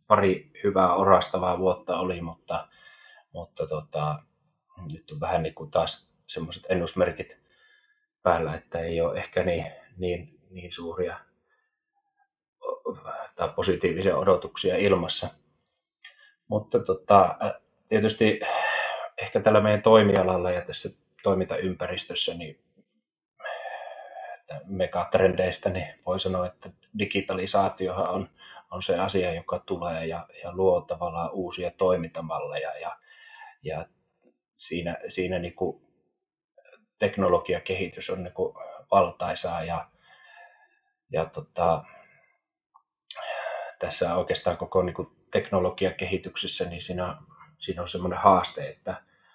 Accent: native